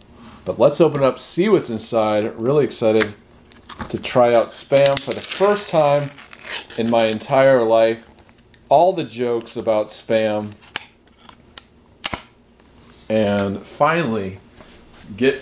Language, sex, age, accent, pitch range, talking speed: English, male, 30-49, American, 105-140 Hz, 115 wpm